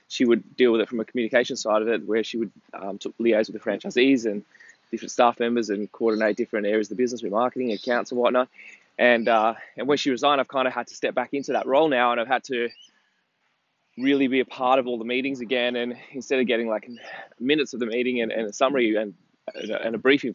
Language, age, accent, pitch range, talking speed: English, 20-39, Australian, 115-135 Hz, 240 wpm